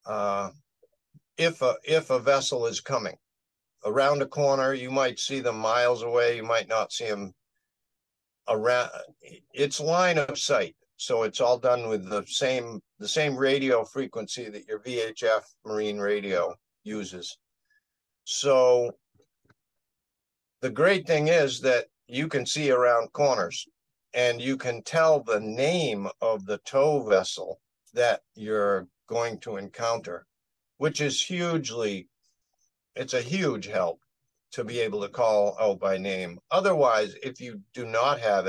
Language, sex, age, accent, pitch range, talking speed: English, male, 50-69, American, 105-140 Hz, 140 wpm